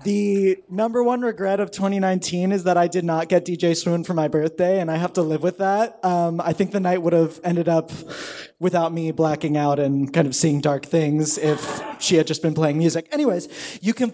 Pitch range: 135-170 Hz